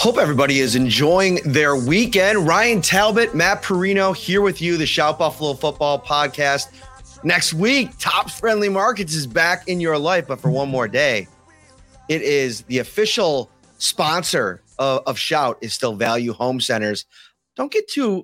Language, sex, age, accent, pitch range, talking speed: English, male, 30-49, American, 135-180 Hz, 160 wpm